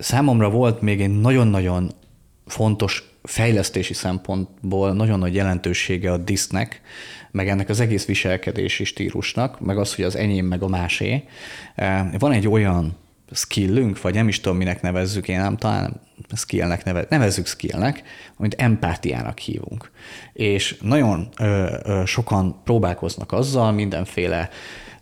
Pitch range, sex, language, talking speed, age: 90-110 Hz, male, Hungarian, 130 wpm, 30-49